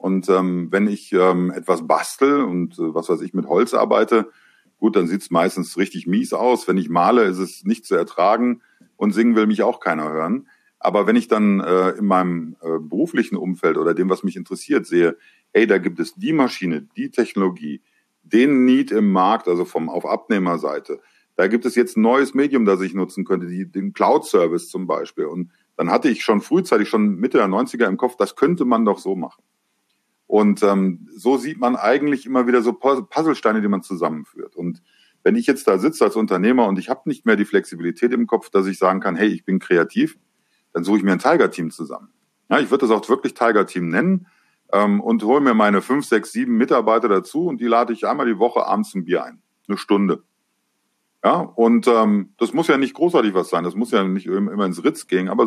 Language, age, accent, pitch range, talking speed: German, 50-69, German, 95-135 Hz, 215 wpm